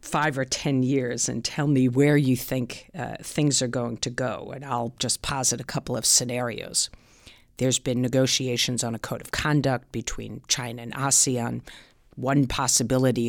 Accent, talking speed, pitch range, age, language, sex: American, 170 wpm, 125-140 Hz, 50-69, English, female